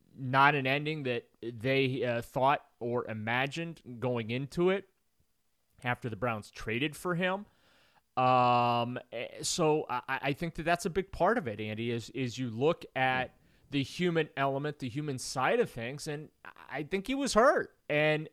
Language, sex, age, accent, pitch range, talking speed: English, male, 30-49, American, 125-155 Hz, 165 wpm